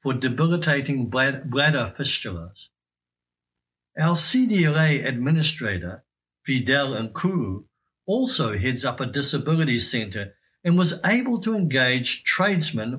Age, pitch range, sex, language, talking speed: 60-79, 100-160 Hz, male, English, 95 wpm